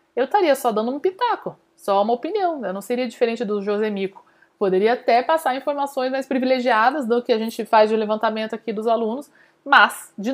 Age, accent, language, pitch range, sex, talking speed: 20-39, Brazilian, Portuguese, 195-245 Hz, female, 190 wpm